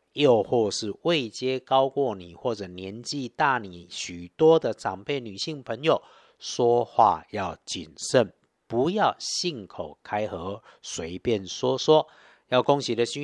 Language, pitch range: Chinese, 105-145 Hz